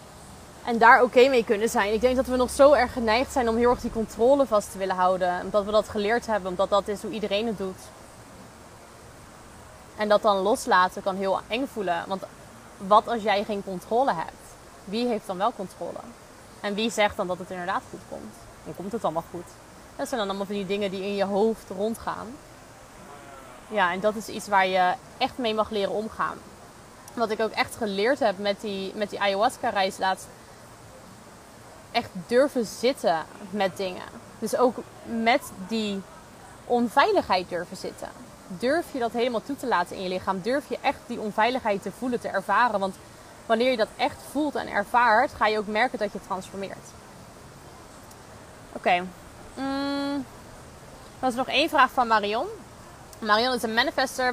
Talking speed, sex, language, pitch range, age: 185 wpm, female, Dutch, 195-240 Hz, 20-39